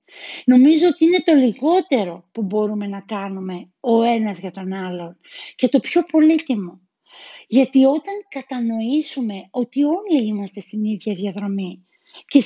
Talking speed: 135 wpm